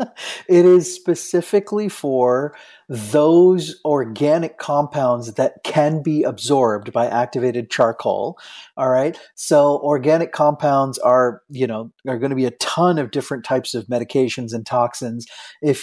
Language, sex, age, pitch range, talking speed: English, male, 30-49, 125-160 Hz, 135 wpm